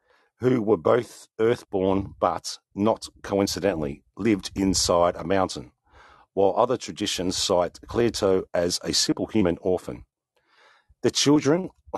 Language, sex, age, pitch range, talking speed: English, male, 50-69, 85-110 Hz, 120 wpm